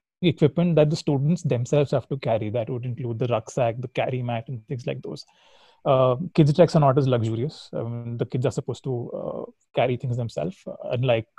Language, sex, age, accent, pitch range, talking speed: English, male, 30-49, Indian, 130-150 Hz, 200 wpm